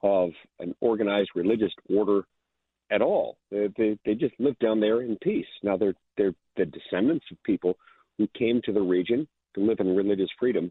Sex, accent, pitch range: male, American, 95-115 Hz